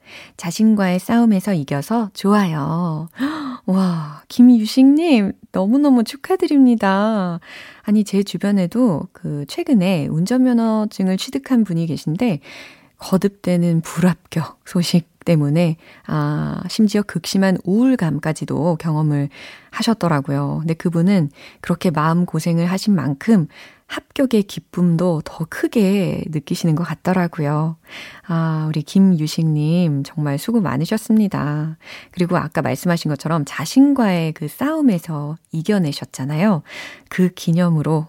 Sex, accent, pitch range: female, native, 160-220 Hz